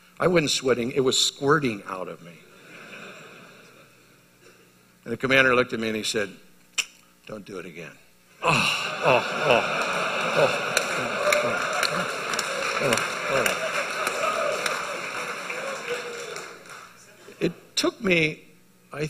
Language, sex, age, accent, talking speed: English, male, 60-79, American, 105 wpm